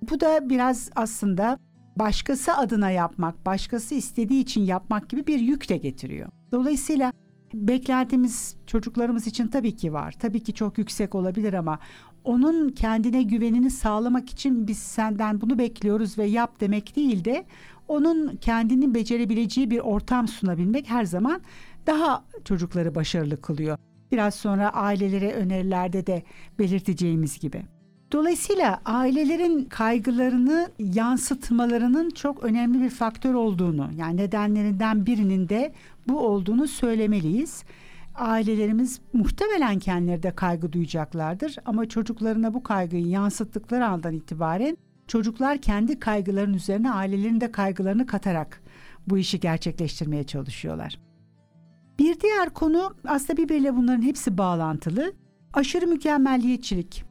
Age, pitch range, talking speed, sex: 60-79, 190-255 Hz, 120 wpm, female